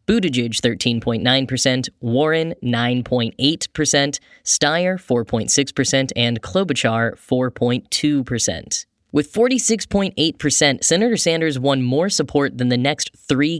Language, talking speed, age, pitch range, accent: English, 90 wpm, 10-29, 120-150 Hz, American